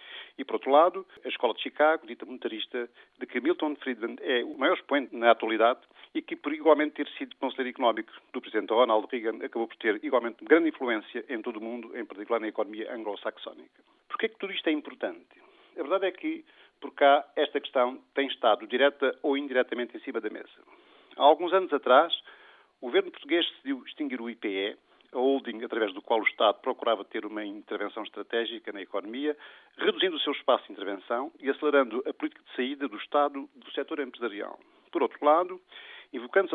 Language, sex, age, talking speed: Portuguese, male, 50-69, 190 wpm